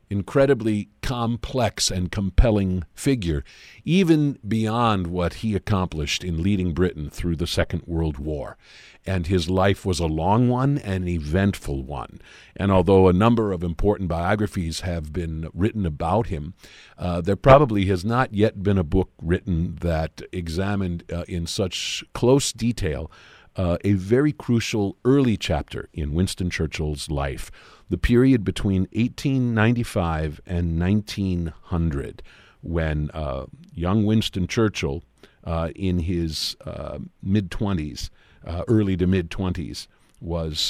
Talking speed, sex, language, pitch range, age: 130 wpm, male, English, 85-110 Hz, 50-69